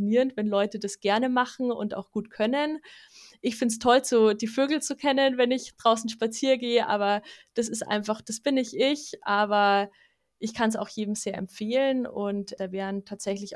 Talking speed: 185 wpm